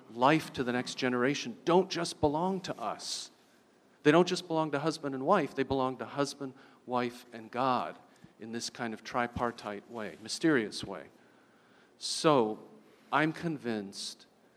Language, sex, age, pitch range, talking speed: English, male, 40-59, 120-145 Hz, 150 wpm